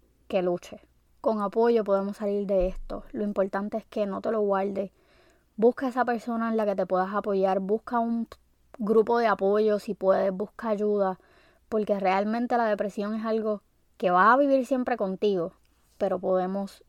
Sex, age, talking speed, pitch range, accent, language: female, 20-39, 170 wpm, 190-225 Hz, American, Spanish